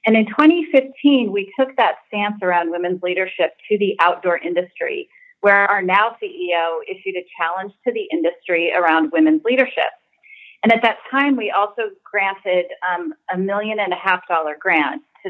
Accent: American